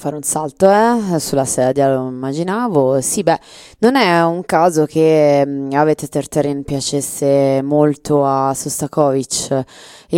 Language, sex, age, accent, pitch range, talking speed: Italian, female, 20-39, native, 140-170 Hz, 130 wpm